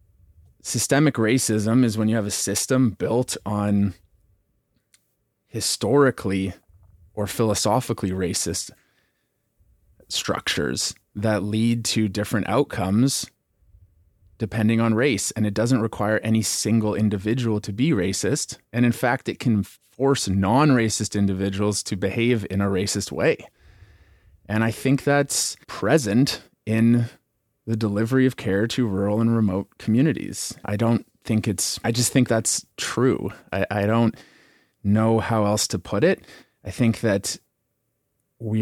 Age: 30-49